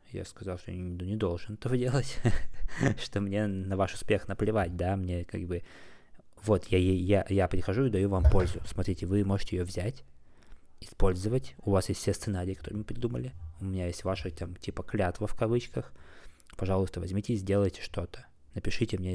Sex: male